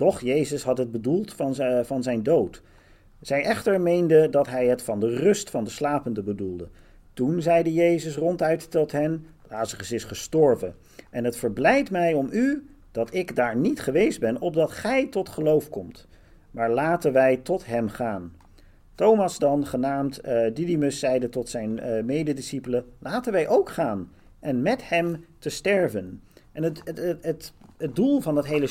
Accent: Dutch